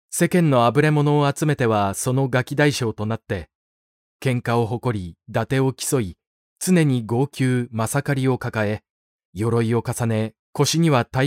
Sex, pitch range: male, 110-145 Hz